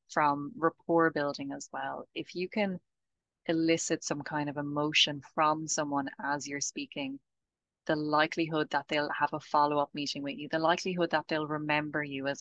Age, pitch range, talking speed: 20-39, 145-165 Hz, 170 wpm